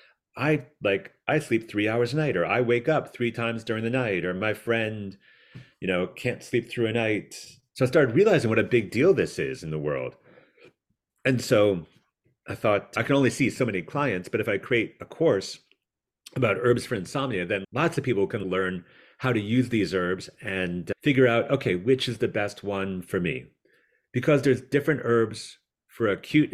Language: English